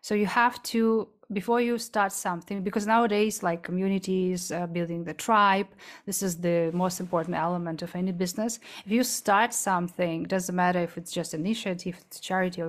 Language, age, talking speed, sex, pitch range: English, 30-49, 185 wpm, female, 185-225 Hz